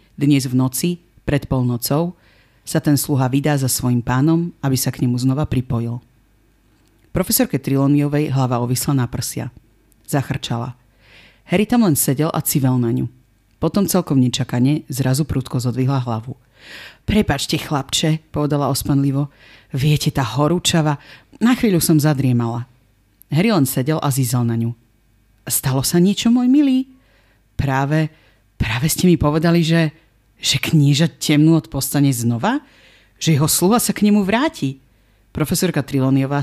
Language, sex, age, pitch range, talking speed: Slovak, female, 40-59, 120-155 Hz, 140 wpm